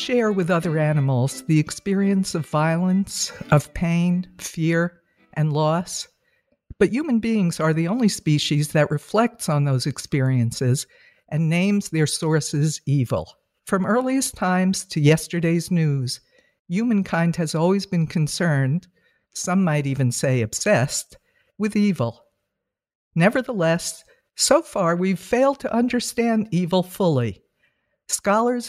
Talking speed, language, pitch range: 120 wpm, English, 150-200 Hz